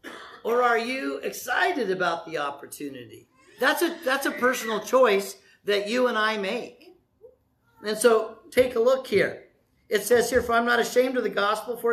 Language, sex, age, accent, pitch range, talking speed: English, male, 50-69, American, 185-255 Hz, 170 wpm